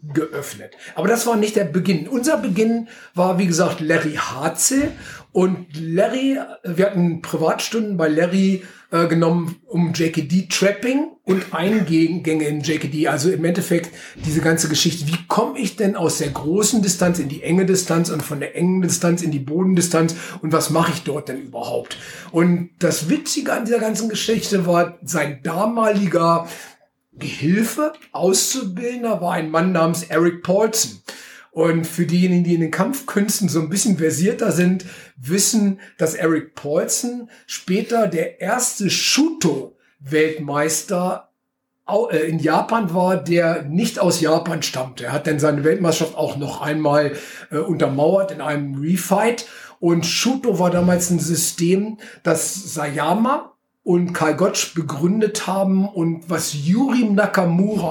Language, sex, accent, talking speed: German, male, German, 145 wpm